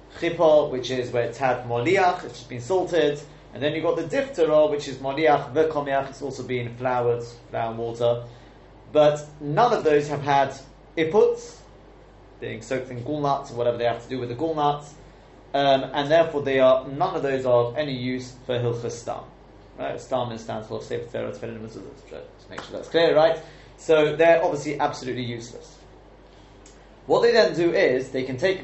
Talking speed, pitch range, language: 180 wpm, 125-160 Hz, English